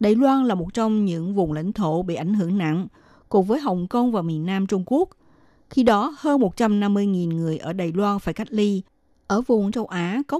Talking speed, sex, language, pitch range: 220 wpm, female, Vietnamese, 180-235 Hz